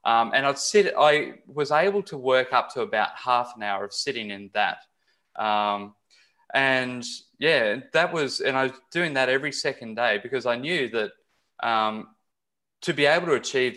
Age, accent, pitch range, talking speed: 20-39, Australian, 110-145 Hz, 185 wpm